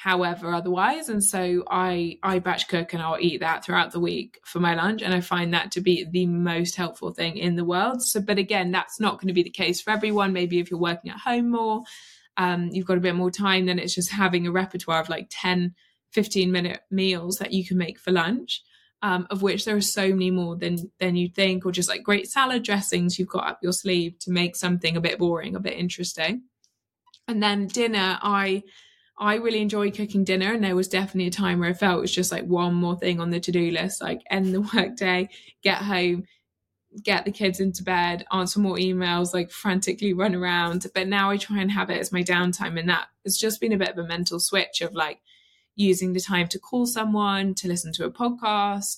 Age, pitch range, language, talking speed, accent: 20-39, 175-200 Hz, English, 230 wpm, British